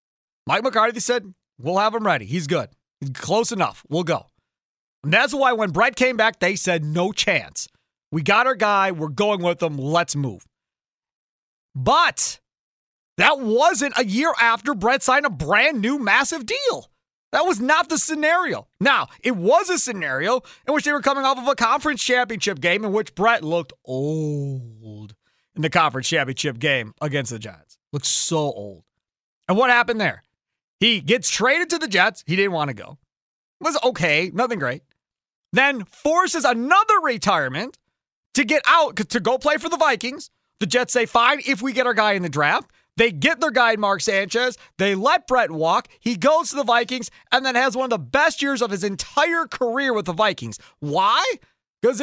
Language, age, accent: English, 30-49, American